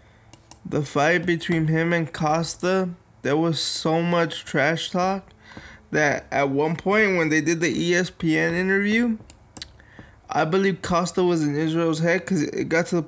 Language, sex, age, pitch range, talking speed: English, male, 20-39, 140-170 Hz, 155 wpm